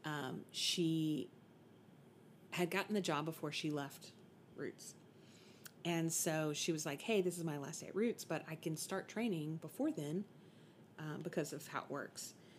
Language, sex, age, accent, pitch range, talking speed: English, female, 30-49, American, 160-190 Hz, 170 wpm